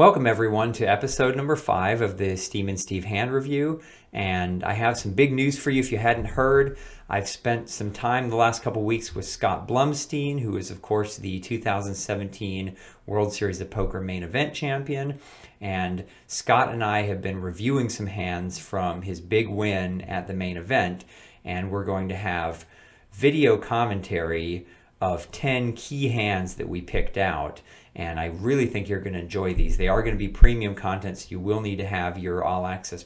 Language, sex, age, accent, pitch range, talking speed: English, male, 40-59, American, 90-115 Hz, 190 wpm